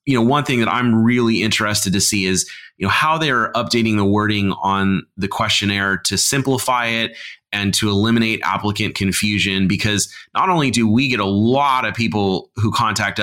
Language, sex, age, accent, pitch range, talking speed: English, male, 30-49, American, 100-120 Hz, 185 wpm